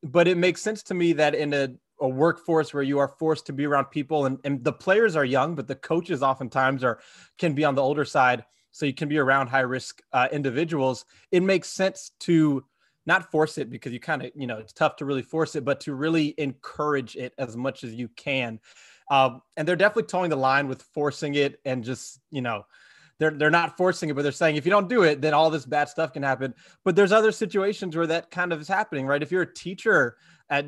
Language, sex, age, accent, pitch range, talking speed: English, male, 20-39, American, 135-170 Hz, 245 wpm